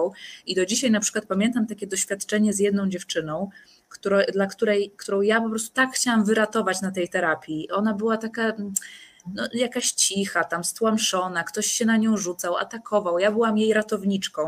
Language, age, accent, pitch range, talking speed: Polish, 20-39, native, 185-225 Hz, 175 wpm